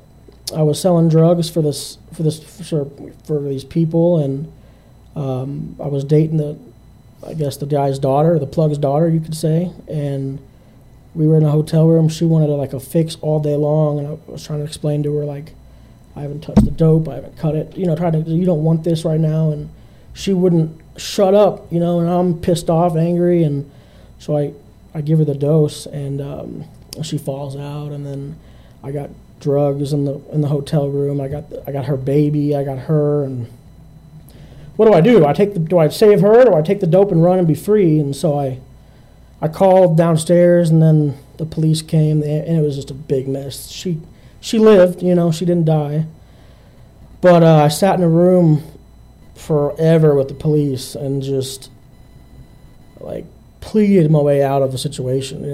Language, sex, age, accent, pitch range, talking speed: English, male, 20-39, American, 140-165 Hz, 205 wpm